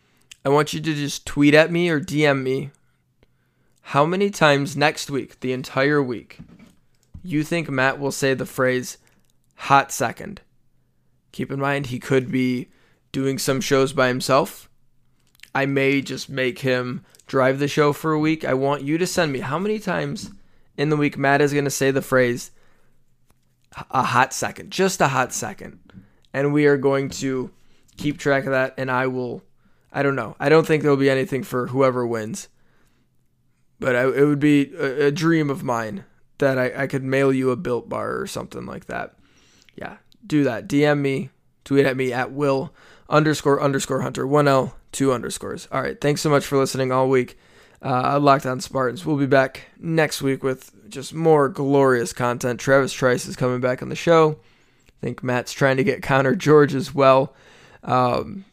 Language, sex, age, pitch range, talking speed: English, male, 20-39, 130-145 Hz, 185 wpm